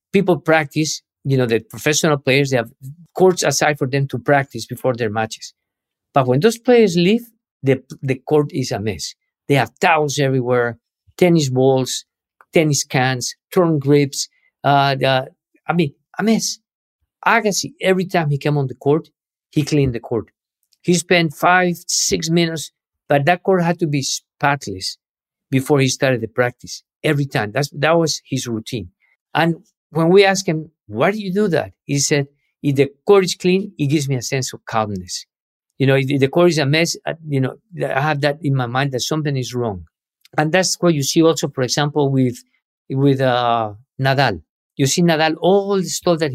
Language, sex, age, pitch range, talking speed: English, male, 50-69, 130-165 Hz, 185 wpm